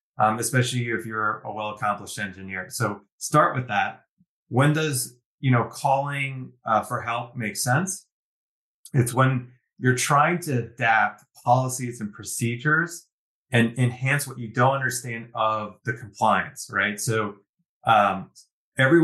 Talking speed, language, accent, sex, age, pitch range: 140 wpm, English, American, male, 30-49, 110-130 Hz